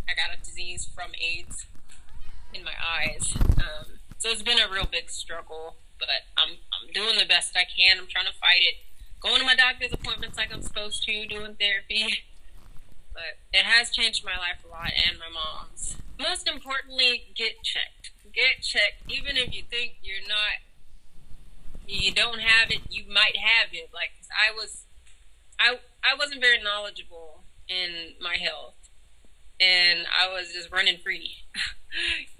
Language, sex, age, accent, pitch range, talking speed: English, female, 20-39, American, 175-240 Hz, 165 wpm